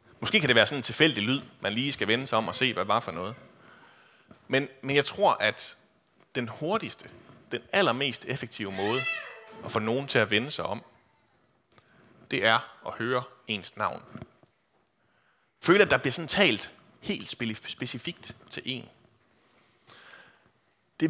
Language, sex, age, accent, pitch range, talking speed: Danish, male, 30-49, native, 120-170 Hz, 160 wpm